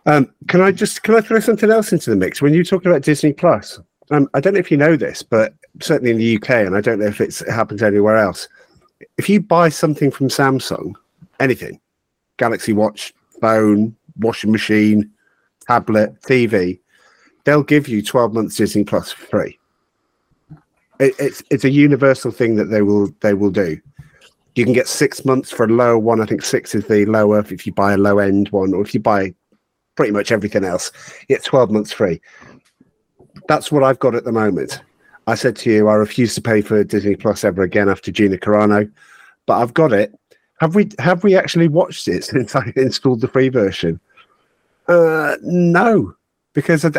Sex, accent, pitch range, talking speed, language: male, British, 105-150 Hz, 195 wpm, English